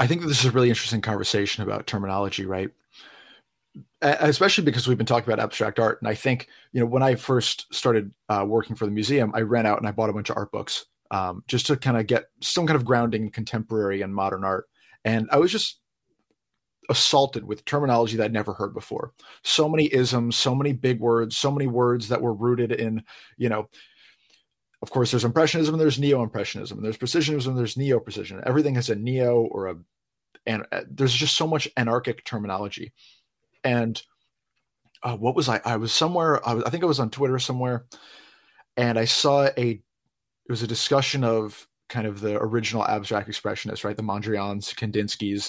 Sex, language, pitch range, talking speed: male, English, 110-130 Hz, 195 wpm